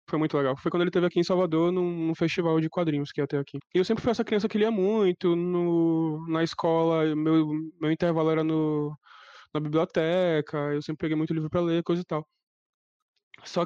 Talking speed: 215 wpm